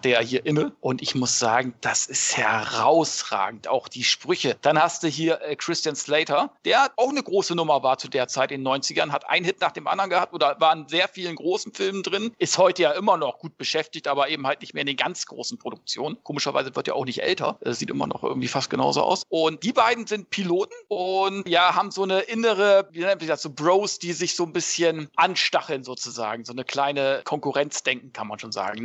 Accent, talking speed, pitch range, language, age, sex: German, 225 wpm, 145-195 Hz, German, 40-59, male